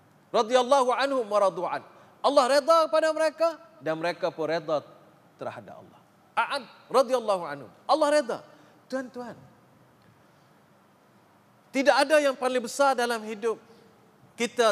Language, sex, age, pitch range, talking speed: Malay, male, 40-59, 200-260 Hz, 110 wpm